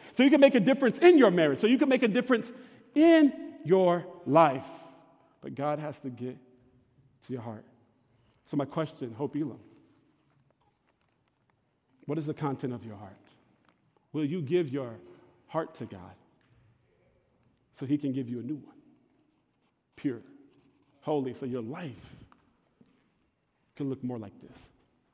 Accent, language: American, English